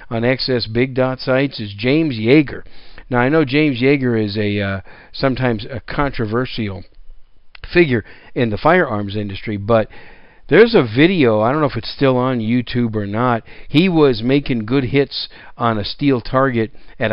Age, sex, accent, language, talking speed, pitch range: 50-69, male, American, English, 170 wpm, 105-135 Hz